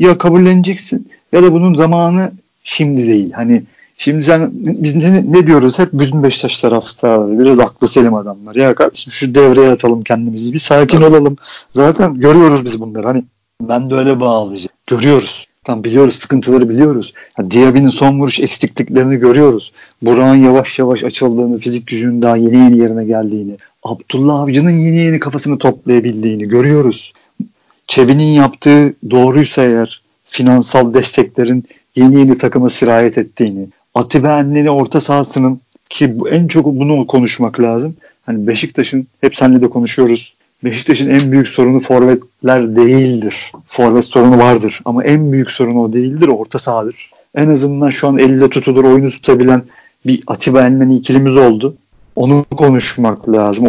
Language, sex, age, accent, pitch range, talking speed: Turkish, male, 50-69, native, 120-145 Hz, 145 wpm